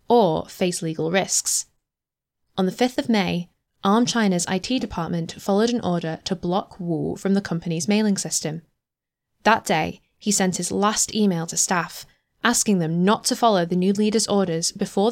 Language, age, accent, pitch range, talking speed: English, 10-29, British, 175-220 Hz, 170 wpm